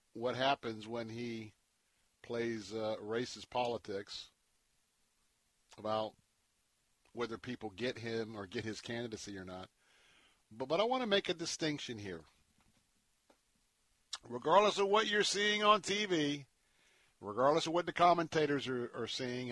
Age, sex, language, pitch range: 50-69, male, English, 120-175 Hz